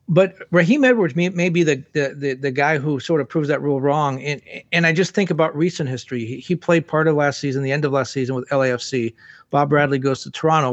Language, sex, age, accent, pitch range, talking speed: English, male, 40-59, American, 135-170 Hz, 245 wpm